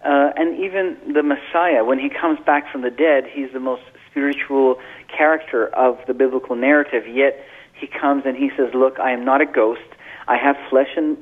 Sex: male